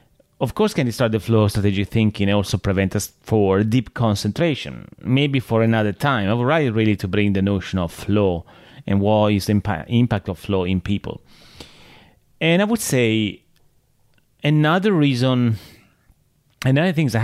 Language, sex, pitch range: English, male, 100-130 Hz